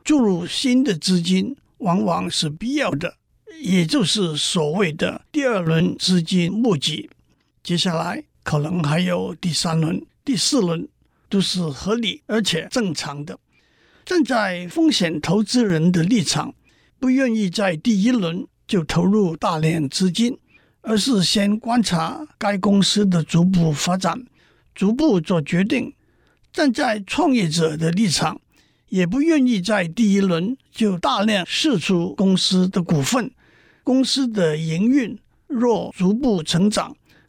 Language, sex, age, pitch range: Chinese, male, 60-79, 175-240 Hz